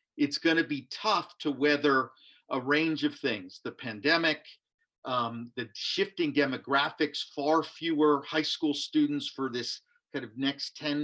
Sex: male